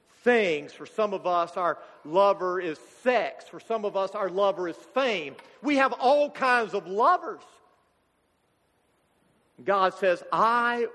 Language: English